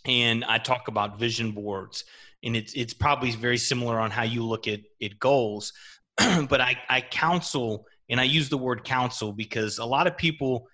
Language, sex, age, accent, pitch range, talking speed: English, male, 30-49, American, 115-155 Hz, 190 wpm